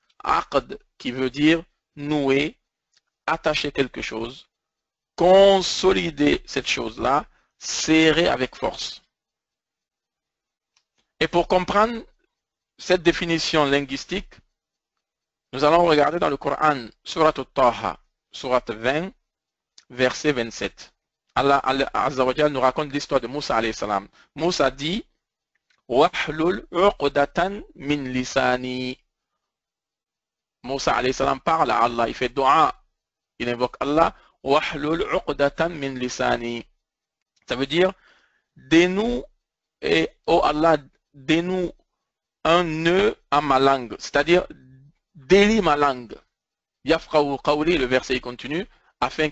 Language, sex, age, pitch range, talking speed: English, male, 50-69, 135-175 Hz, 105 wpm